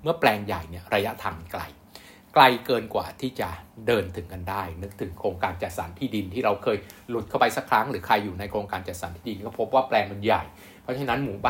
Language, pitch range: Thai, 95-130 Hz